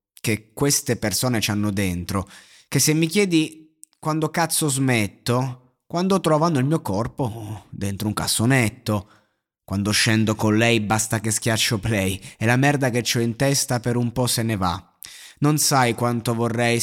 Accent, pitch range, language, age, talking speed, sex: native, 105-130 Hz, Italian, 30-49, 165 wpm, male